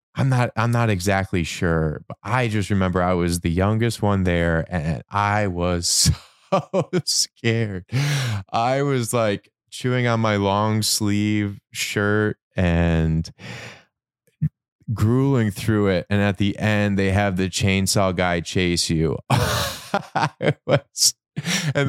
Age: 20-39